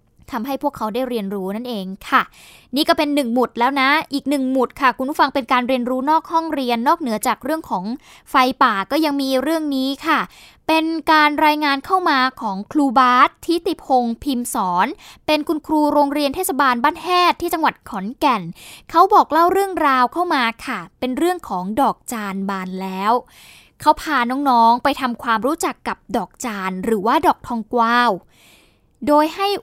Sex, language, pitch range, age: female, Thai, 235-305 Hz, 10-29